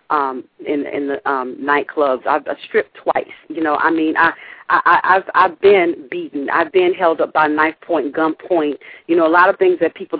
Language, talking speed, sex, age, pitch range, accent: English, 225 wpm, female, 40-59, 145-200 Hz, American